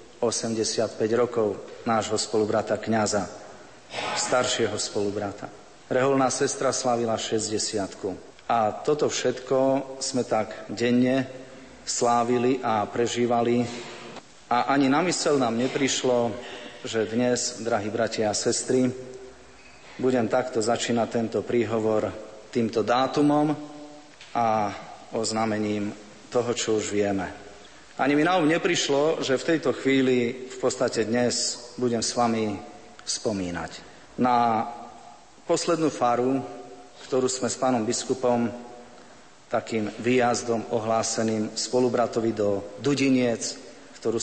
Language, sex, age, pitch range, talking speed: Slovak, male, 40-59, 110-130 Hz, 100 wpm